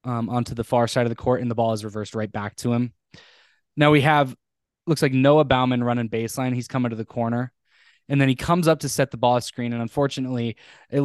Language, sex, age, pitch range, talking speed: English, male, 10-29, 120-135 Hz, 245 wpm